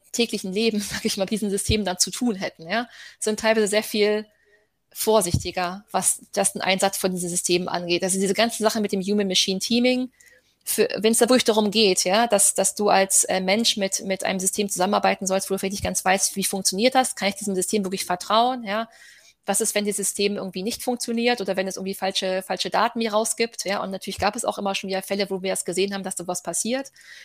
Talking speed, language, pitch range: 230 wpm, German, 190-220 Hz